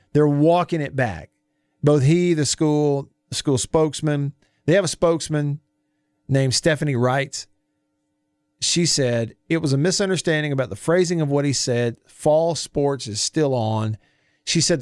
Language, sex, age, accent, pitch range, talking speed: English, male, 40-59, American, 110-160 Hz, 155 wpm